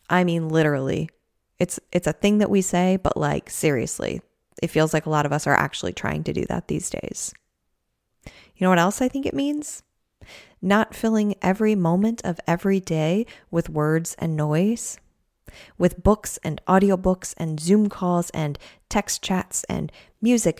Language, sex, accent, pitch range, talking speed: English, female, American, 165-210 Hz, 170 wpm